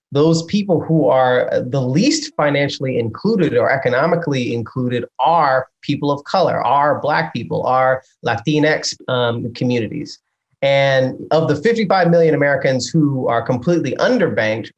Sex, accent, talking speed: male, American, 130 wpm